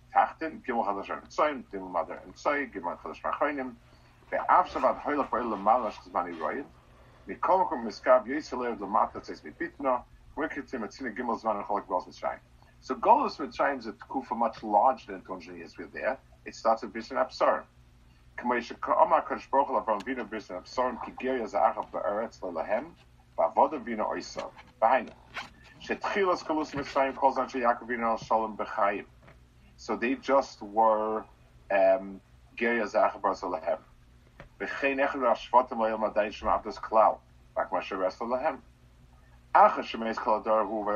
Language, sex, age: English, male, 50-69